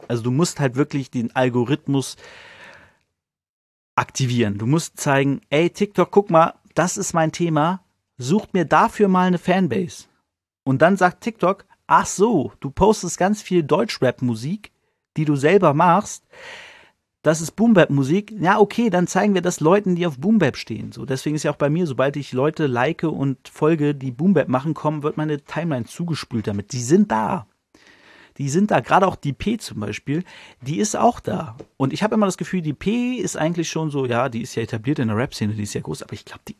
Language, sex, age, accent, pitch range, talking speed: German, male, 40-59, German, 130-180 Hz, 195 wpm